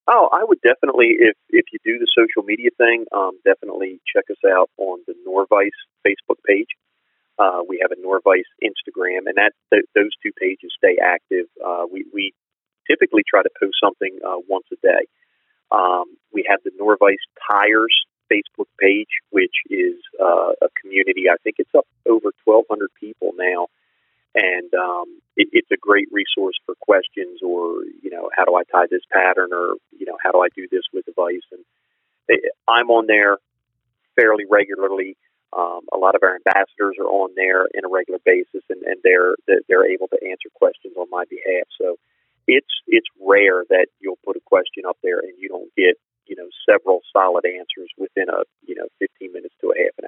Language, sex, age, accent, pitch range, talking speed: English, male, 40-59, American, 340-465 Hz, 185 wpm